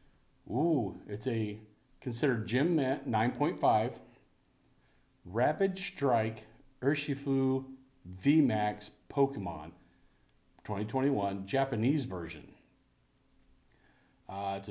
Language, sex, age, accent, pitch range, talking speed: English, male, 40-59, American, 105-145 Hz, 65 wpm